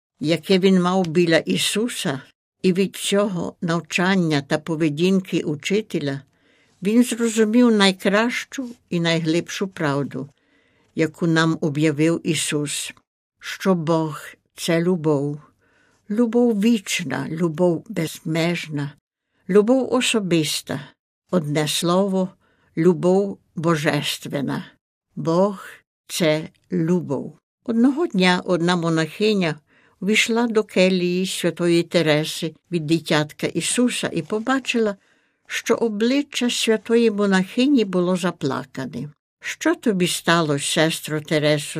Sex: female